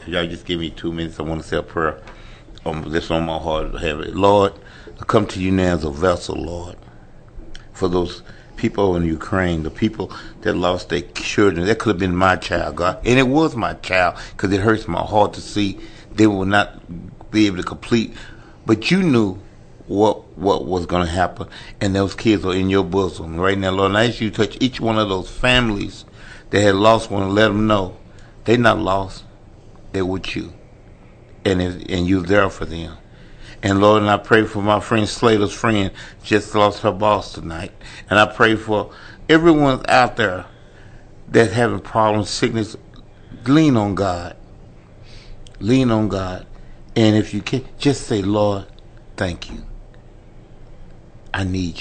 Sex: male